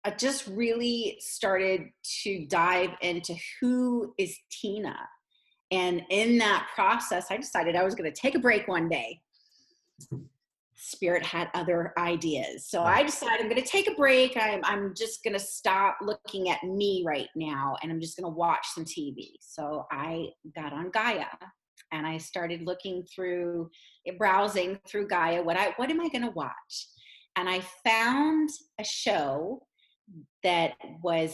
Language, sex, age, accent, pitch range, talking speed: English, female, 30-49, American, 170-220 Hz, 165 wpm